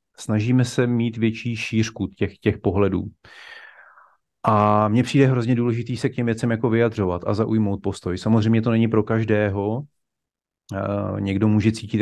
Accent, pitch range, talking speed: native, 100-110 Hz, 150 wpm